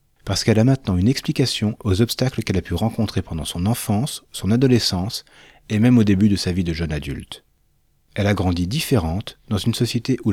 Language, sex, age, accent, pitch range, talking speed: French, male, 40-59, French, 95-125 Hz, 205 wpm